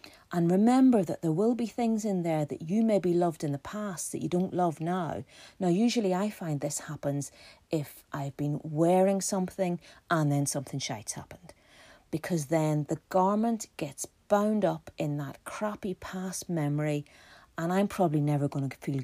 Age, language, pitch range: 40-59, English, 150-225 Hz